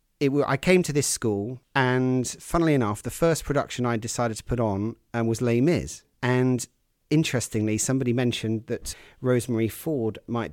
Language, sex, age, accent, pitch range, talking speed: English, male, 40-59, British, 115-130 Hz, 160 wpm